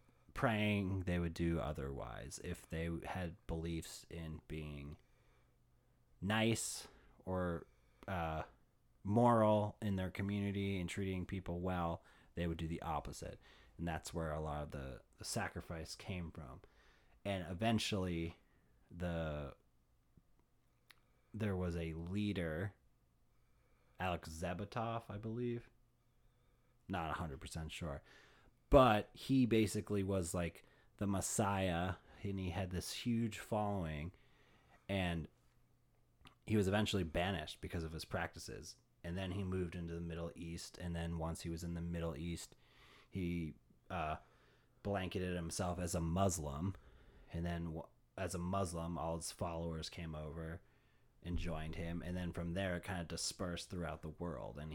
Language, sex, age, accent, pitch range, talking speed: English, male, 30-49, American, 80-100 Hz, 135 wpm